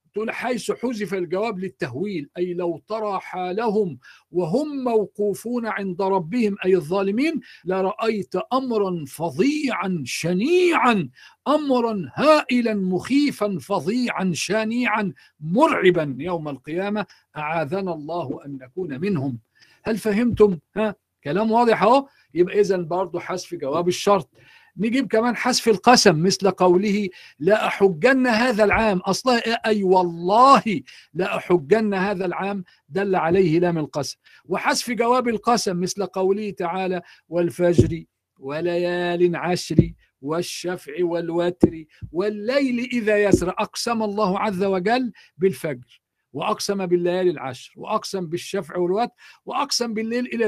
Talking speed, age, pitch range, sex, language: 110 wpm, 50-69, 175-220 Hz, male, Arabic